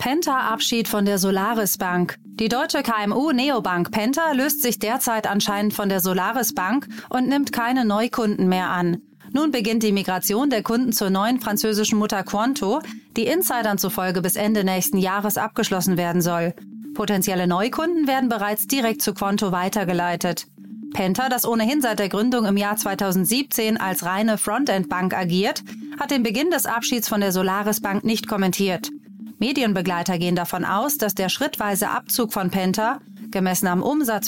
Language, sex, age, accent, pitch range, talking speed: German, female, 30-49, German, 190-235 Hz, 155 wpm